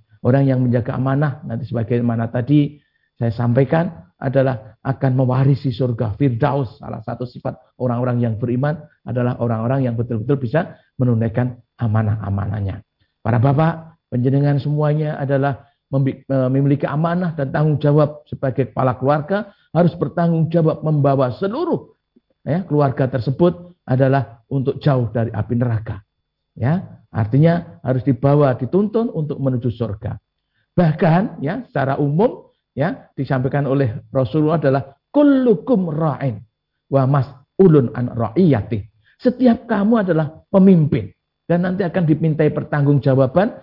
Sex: male